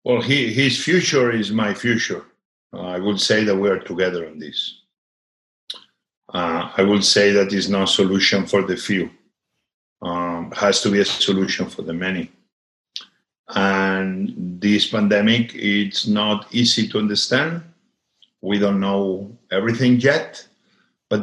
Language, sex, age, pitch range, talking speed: English, male, 50-69, 100-125 Hz, 145 wpm